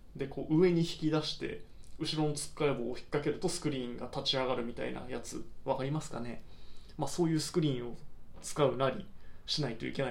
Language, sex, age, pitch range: Japanese, male, 20-39, 125-155 Hz